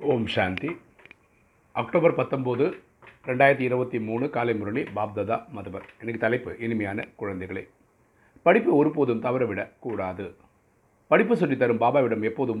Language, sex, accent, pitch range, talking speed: Tamil, male, native, 105-120 Hz, 110 wpm